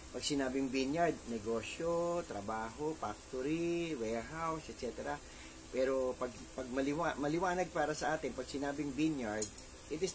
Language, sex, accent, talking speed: English, male, Filipino, 125 wpm